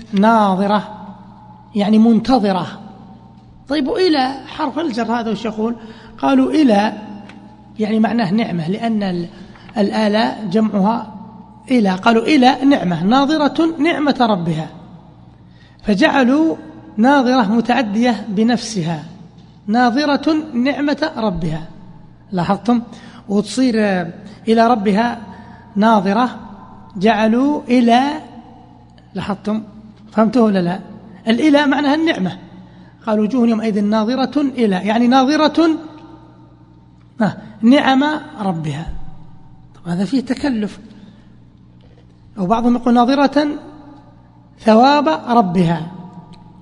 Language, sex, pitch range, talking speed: Arabic, male, 190-255 Hz, 80 wpm